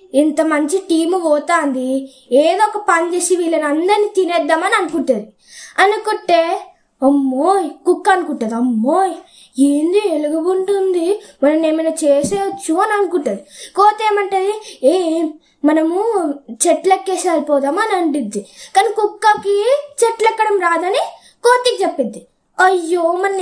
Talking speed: 95 wpm